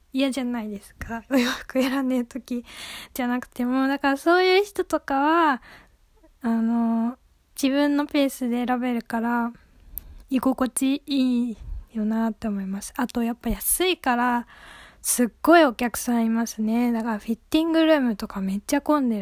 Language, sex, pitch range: Japanese, female, 235-295 Hz